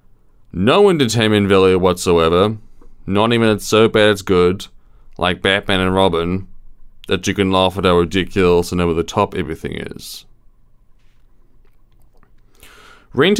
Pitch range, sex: 95-115 Hz, male